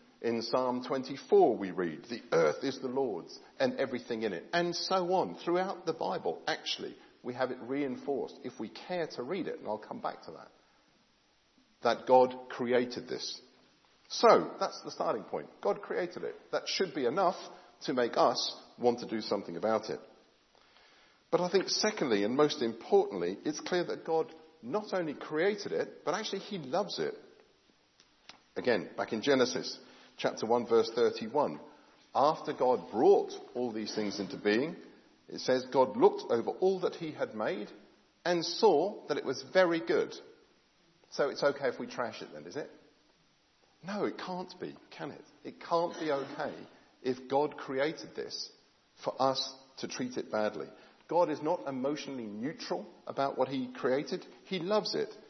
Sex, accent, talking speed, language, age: male, British, 170 wpm, English, 50-69